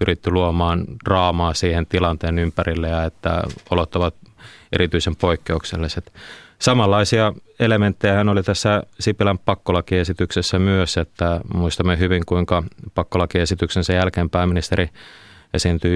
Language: Finnish